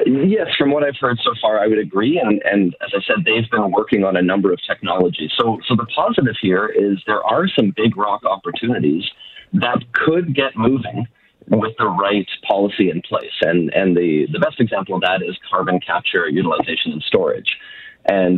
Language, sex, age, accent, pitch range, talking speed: English, male, 40-59, American, 95-125 Hz, 195 wpm